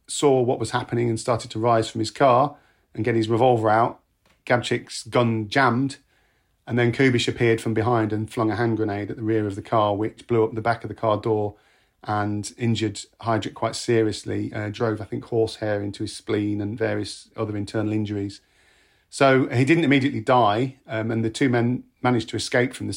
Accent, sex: British, male